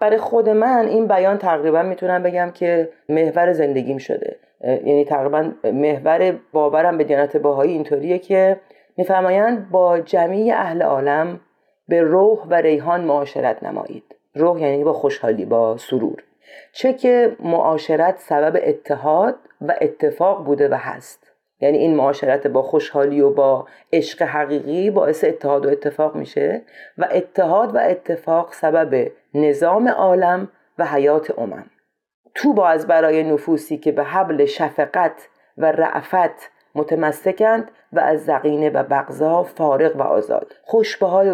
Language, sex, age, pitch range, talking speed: Persian, female, 40-59, 150-190 Hz, 135 wpm